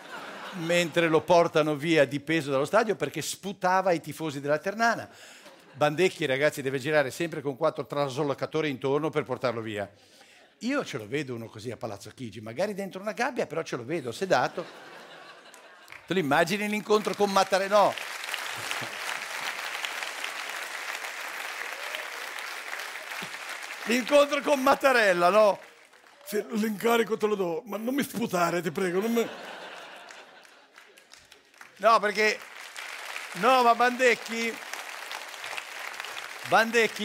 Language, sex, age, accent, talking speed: Italian, male, 60-79, native, 120 wpm